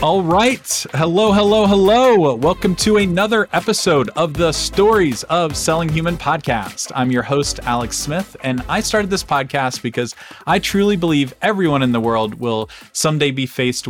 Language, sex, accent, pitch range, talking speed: English, male, American, 125-155 Hz, 165 wpm